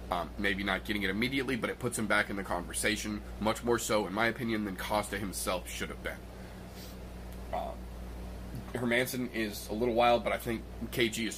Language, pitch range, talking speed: English, 100-115 Hz, 195 wpm